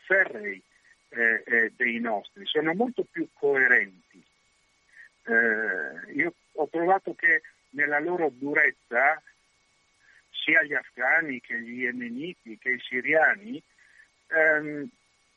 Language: Italian